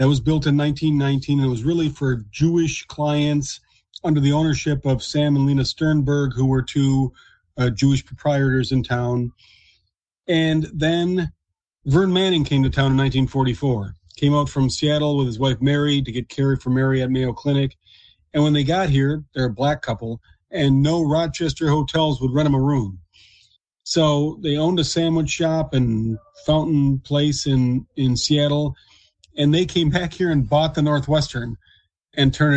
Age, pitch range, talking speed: 40-59, 130-155 Hz, 175 wpm